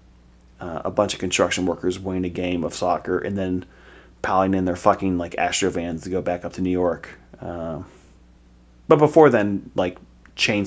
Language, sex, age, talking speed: English, male, 30-49, 185 wpm